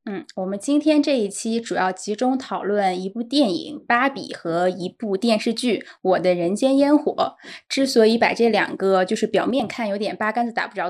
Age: 10-29